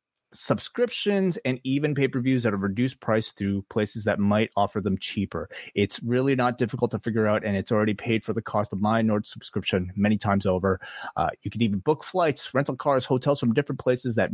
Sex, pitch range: male, 105-135 Hz